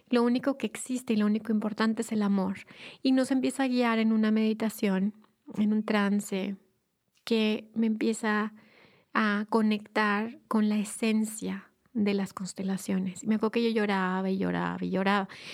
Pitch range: 205-230 Hz